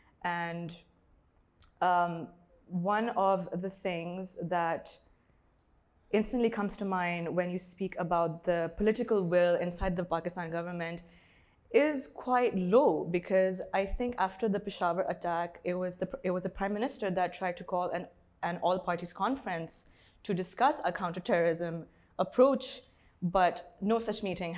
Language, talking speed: English, 135 wpm